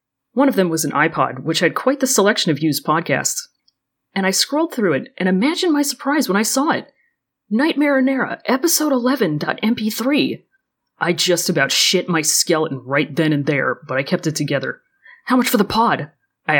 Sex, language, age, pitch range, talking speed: female, English, 30-49, 155-255 Hz, 190 wpm